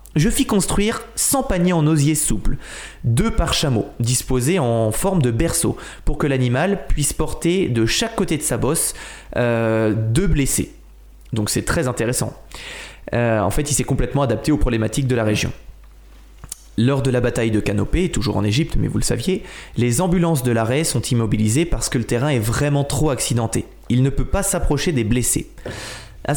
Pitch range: 115-165 Hz